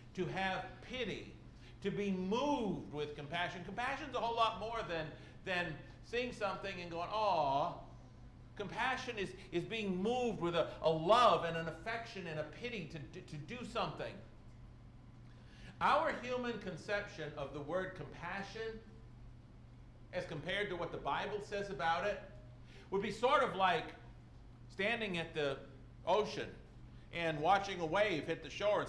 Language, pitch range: English, 125-205 Hz